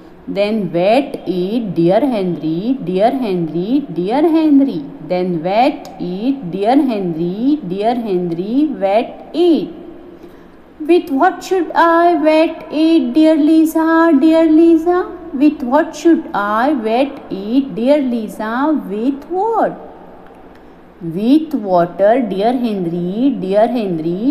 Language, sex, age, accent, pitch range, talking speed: Marathi, female, 50-69, native, 225-325 Hz, 110 wpm